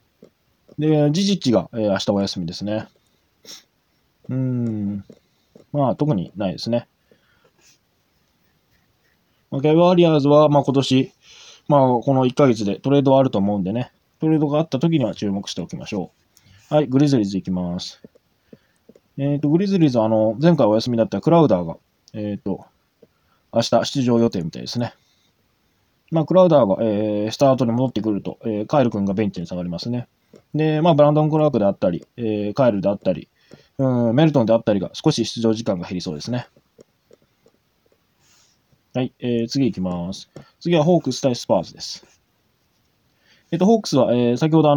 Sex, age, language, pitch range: male, 20-39, Japanese, 105-150 Hz